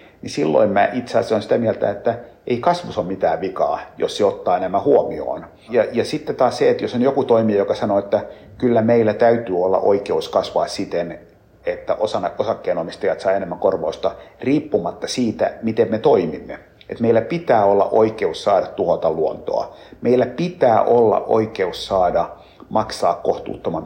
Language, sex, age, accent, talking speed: Finnish, male, 50-69, native, 165 wpm